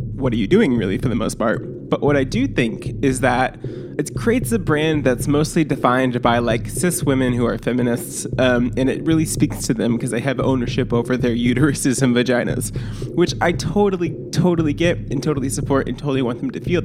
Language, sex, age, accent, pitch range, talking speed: English, male, 20-39, American, 125-150 Hz, 215 wpm